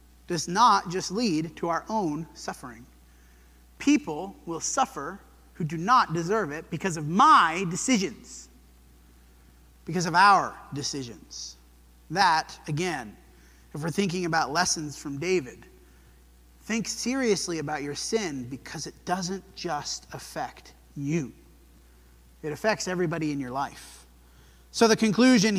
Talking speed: 125 wpm